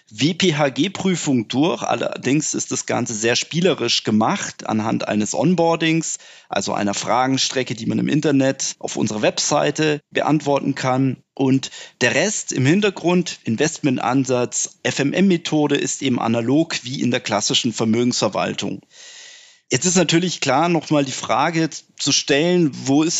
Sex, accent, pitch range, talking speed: male, German, 130-165 Hz, 130 wpm